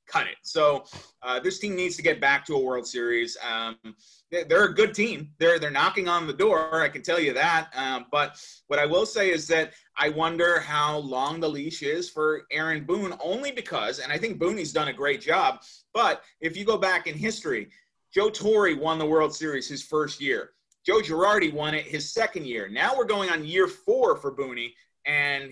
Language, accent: English, American